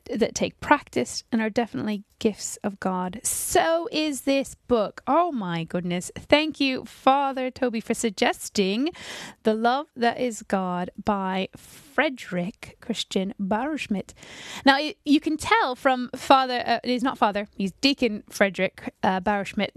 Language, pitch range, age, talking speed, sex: English, 205-270 Hz, 10-29, 140 wpm, female